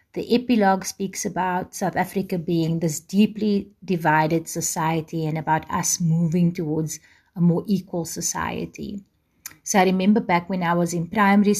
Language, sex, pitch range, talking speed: English, female, 170-190 Hz, 150 wpm